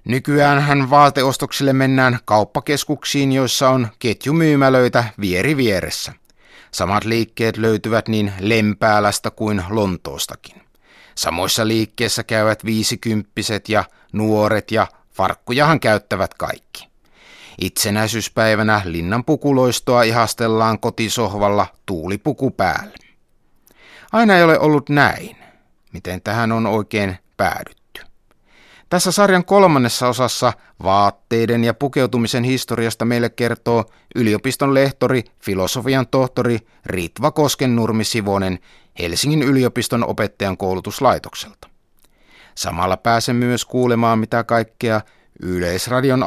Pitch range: 105-130 Hz